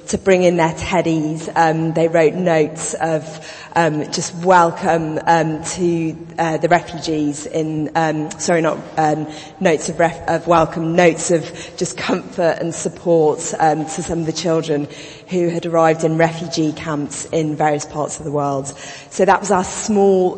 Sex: female